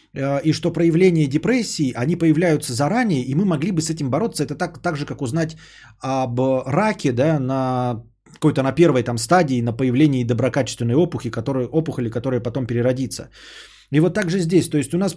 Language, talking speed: Bulgarian, 180 wpm